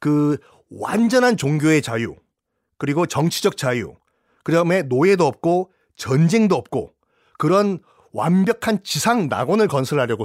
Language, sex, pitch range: Korean, male, 140-200 Hz